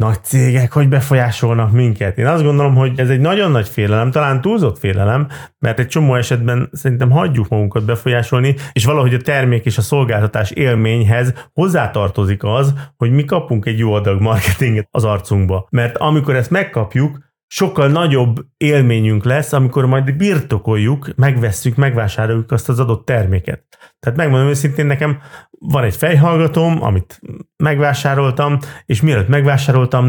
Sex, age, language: male, 30-49, Hungarian